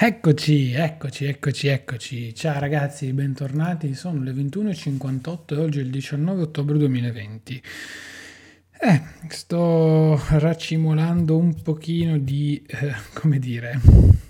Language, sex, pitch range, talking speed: Italian, male, 125-145 Hz, 110 wpm